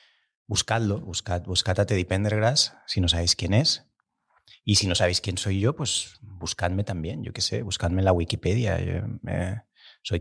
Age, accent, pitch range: 30-49, Spanish, 90-110 Hz